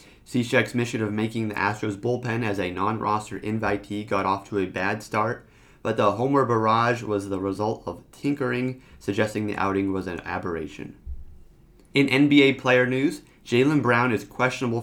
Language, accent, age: English, American, 30-49